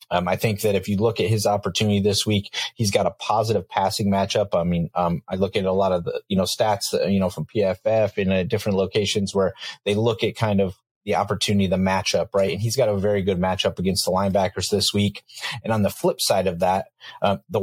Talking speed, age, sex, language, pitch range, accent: 240 wpm, 30-49, male, English, 95-110 Hz, American